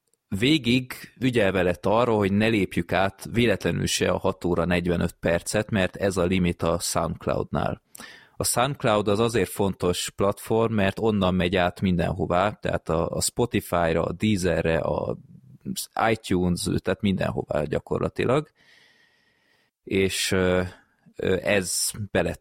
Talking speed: 125 wpm